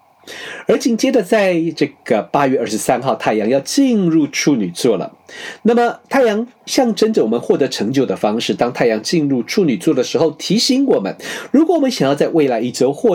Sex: male